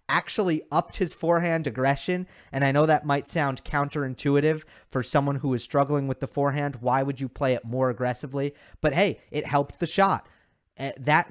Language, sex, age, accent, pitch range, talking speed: English, male, 30-49, American, 130-160 Hz, 180 wpm